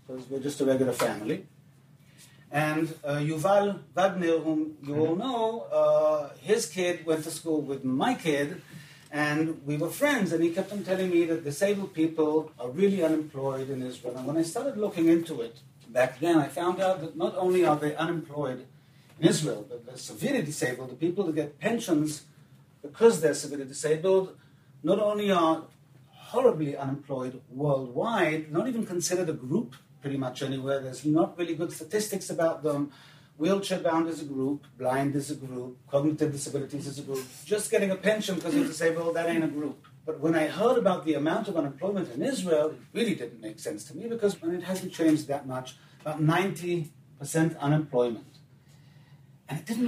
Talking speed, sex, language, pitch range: 180 wpm, male, English, 140-180 Hz